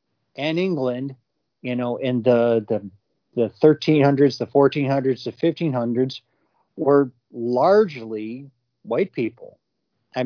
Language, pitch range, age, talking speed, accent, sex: English, 120-145 Hz, 40-59, 105 wpm, American, male